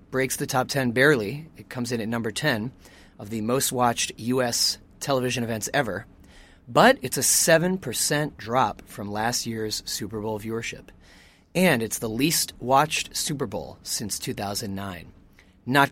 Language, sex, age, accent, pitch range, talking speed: English, male, 30-49, American, 110-140 Hz, 155 wpm